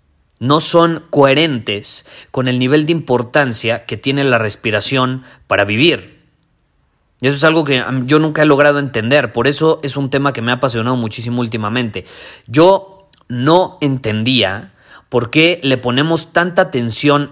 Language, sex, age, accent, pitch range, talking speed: Spanish, male, 30-49, Mexican, 120-155 Hz, 150 wpm